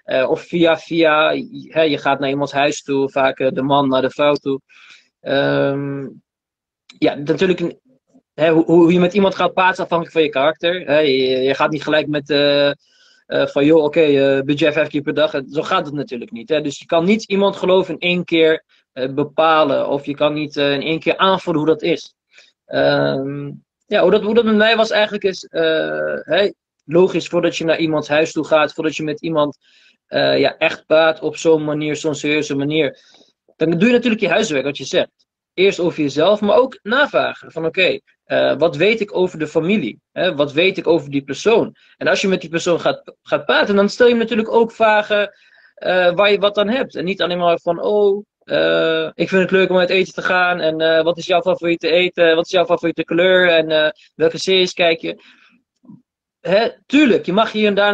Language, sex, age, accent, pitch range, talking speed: Dutch, male, 20-39, Dutch, 145-185 Hz, 200 wpm